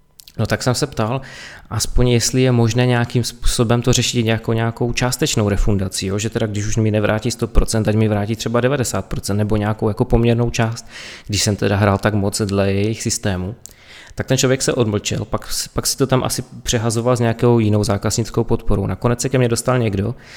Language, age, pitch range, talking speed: Czech, 20-39, 105-120 Hz, 195 wpm